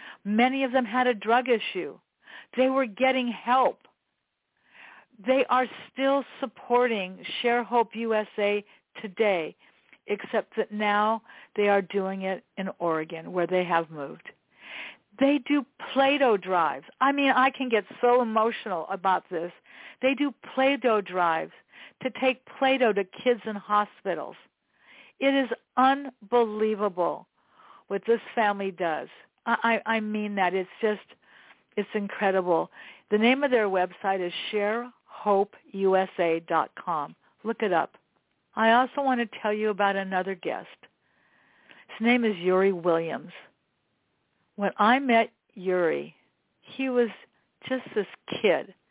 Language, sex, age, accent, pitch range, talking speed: English, female, 50-69, American, 190-250 Hz, 130 wpm